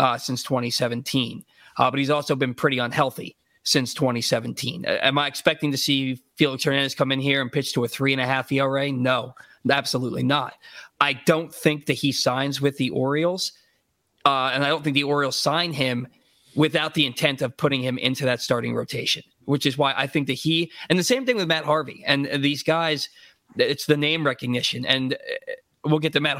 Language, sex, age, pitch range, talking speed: English, male, 20-39, 135-160 Hz, 200 wpm